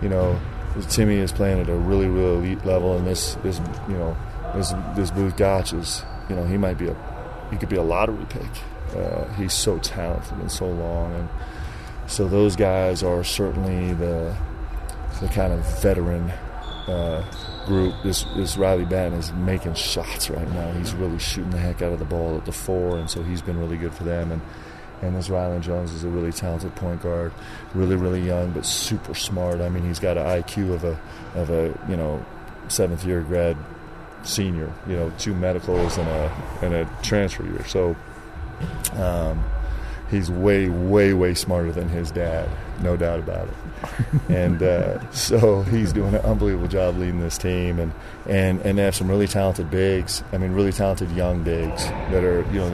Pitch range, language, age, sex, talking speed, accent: 85-95 Hz, English, 30-49, male, 190 wpm, American